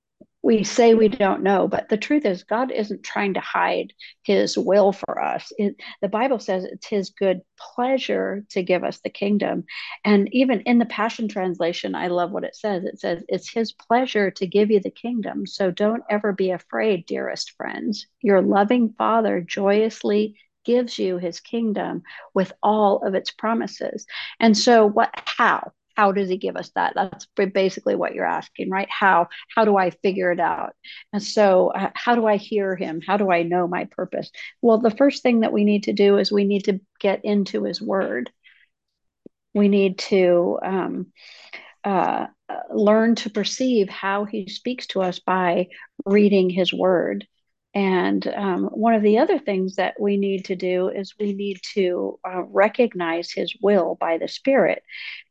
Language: English